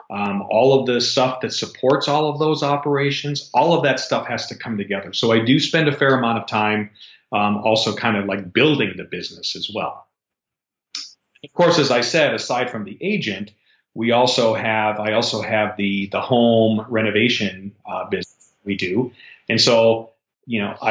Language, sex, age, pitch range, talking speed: English, male, 40-59, 105-130 Hz, 185 wpm